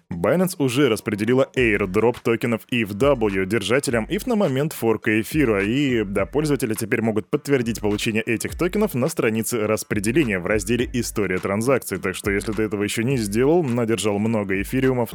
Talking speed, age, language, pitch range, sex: 160 wpm, 20-39, Russian, 105-135 Hz, male